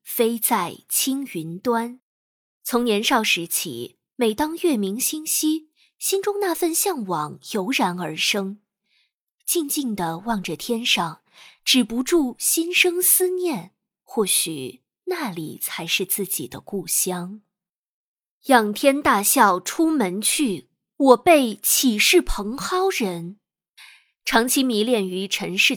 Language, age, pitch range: Chinese, 20-39, 190-290 Hz